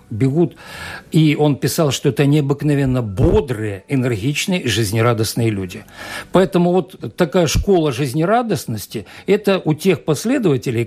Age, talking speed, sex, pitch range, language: 60-79, 120 wpm, male, 115-165 Hz, Russian